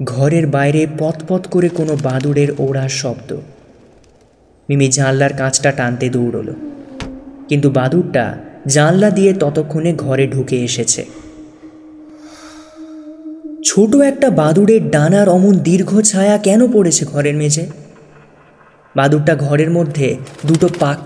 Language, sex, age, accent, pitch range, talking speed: Bengali, male, 20-39, native, 140-190 Hz, 105 wpm